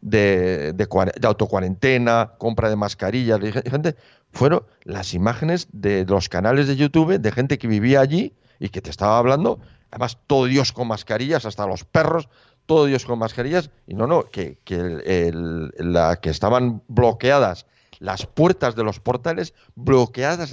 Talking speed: 160 wpm